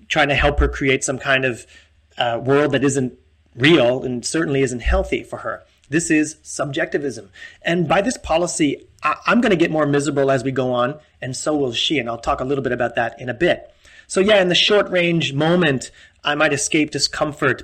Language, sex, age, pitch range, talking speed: English, male, 30-49, 125-155 Hz, 210 wpm